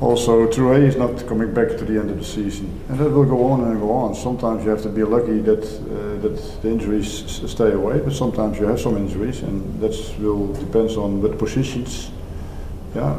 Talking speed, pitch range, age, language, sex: 220 wpm, 105-120 Hz, 50-69, English, male